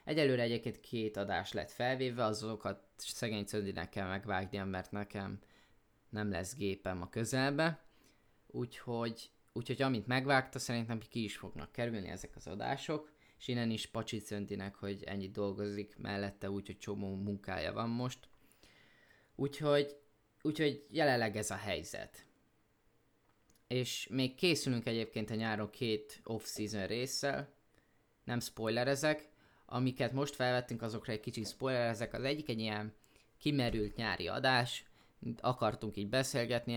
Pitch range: 105-125 Hz